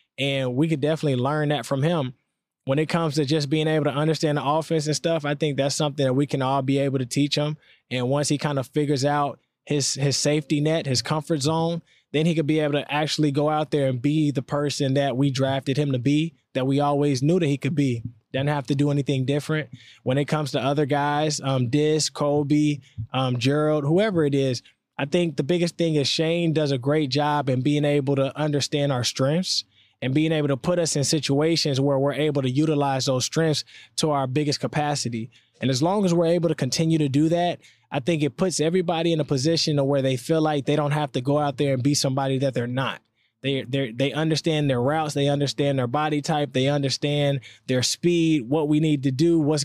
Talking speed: 230 wpm